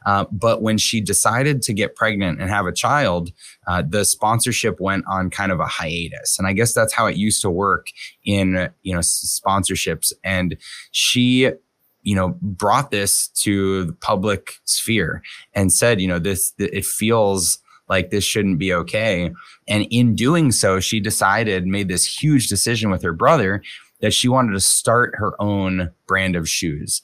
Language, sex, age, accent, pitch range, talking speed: English, male, 20-39, American, 95-115 Hz, 175 wpm